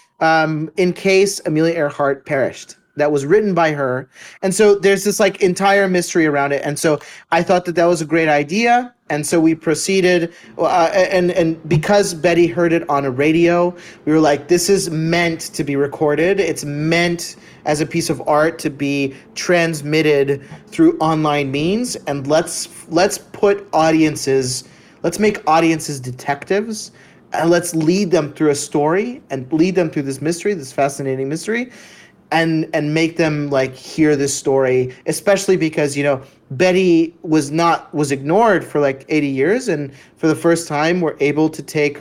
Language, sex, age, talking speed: English, male, 30-49, 175 wpm